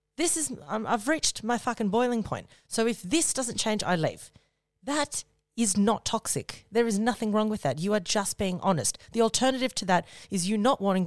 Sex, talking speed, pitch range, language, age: female, 210 wpm, 150-185 Hz, English, 30-49